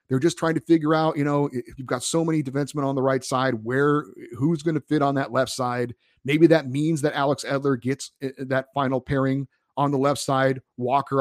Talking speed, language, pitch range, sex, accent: 225 wpm, English, 120-150 Hz, male, American